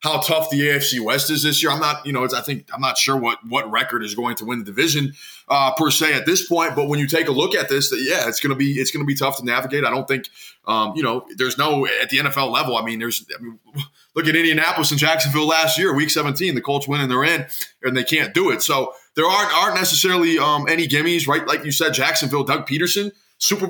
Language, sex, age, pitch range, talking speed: English, male, 20-39, 135-155 Hz, 265 wpm